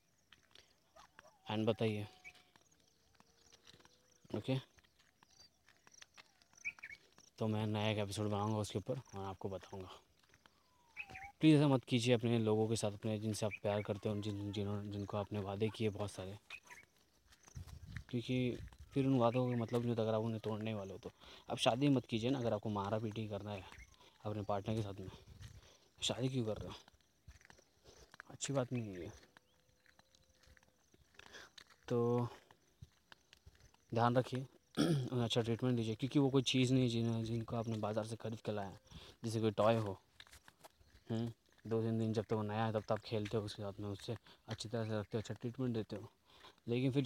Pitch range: 105-120 Hz